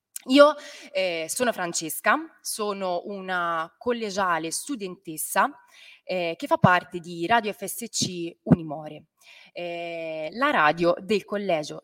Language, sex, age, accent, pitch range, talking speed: Italian, female, 20-39, native, 170-220 Hz, 105 wpm